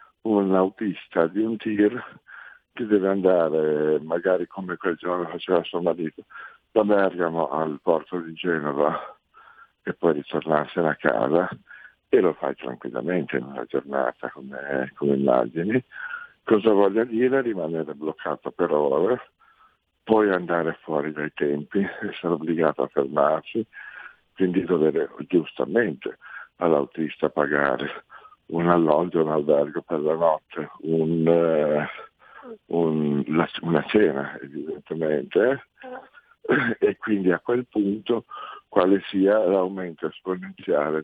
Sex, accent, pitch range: male, native, 75-100 Hz